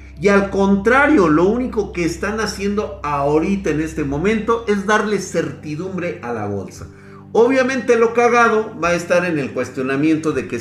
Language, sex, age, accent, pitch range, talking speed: Spanish, male, 50-69, Mexican, 130-200 Hz, 165 wpm